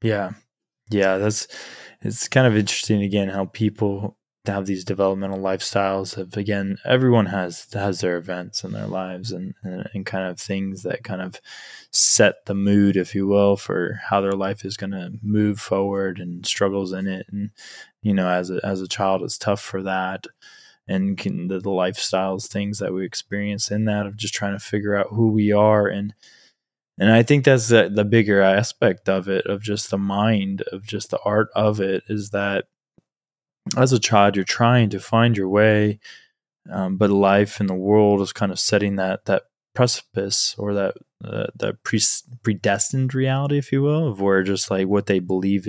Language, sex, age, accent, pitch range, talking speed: English, male, 20-39, American, 95-105 Hz, 190 wpm